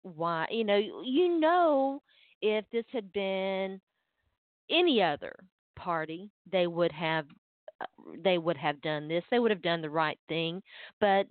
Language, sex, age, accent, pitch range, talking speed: English, female, 40-59, American, 180-245 Hz, 150 wpm